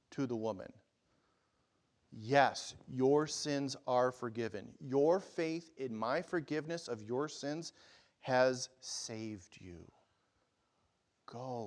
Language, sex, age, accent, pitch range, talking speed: English, male, 40-59, American, 115-165 Hz, 105 wpm